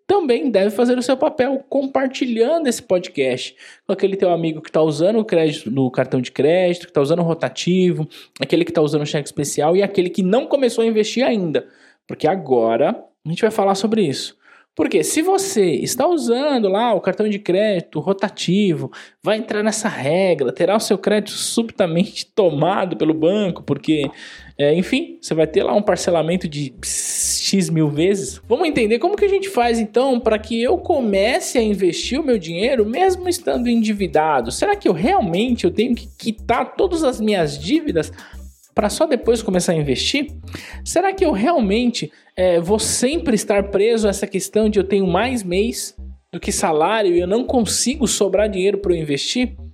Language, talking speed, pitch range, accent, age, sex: Portuguese, 180 wpm, 170-240 Hz, Brazilian, 20-39, male